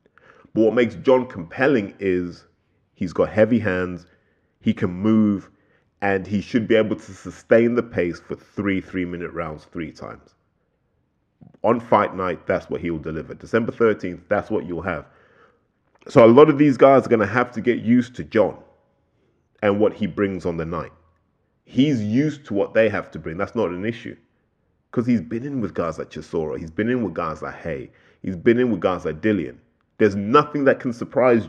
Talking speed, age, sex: 195 wpm, 30-49, male